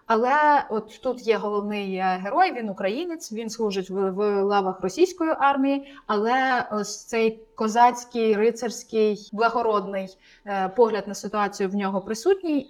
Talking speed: 125 wpm